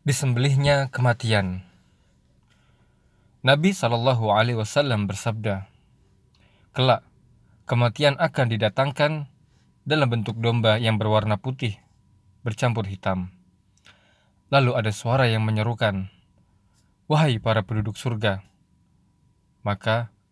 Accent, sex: native, male